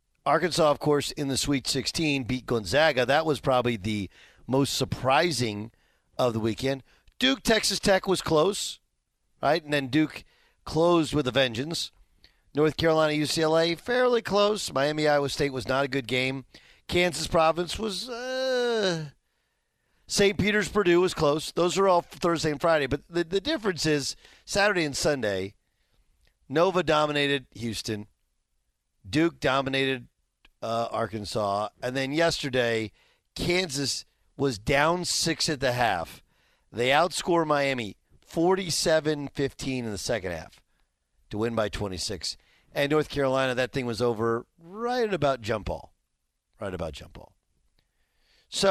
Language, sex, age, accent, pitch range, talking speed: English, male, 40-59, American, 110-165 Hz, 140 wpm